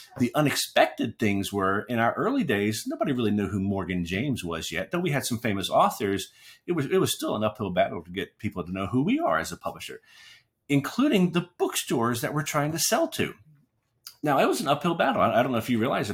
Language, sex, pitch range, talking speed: English, male, 100-150 Hz, 235 wpm